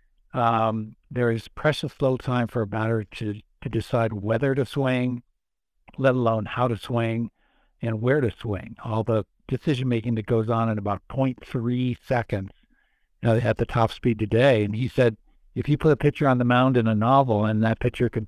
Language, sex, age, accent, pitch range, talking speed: English, male, 60-79, American, 110-125 Hz, 200 wpm